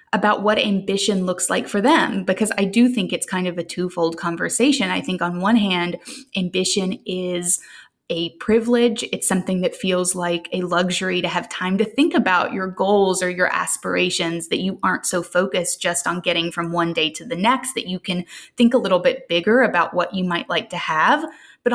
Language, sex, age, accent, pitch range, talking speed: English, female, 20-39, American, 180-230 Hz, 205 wpm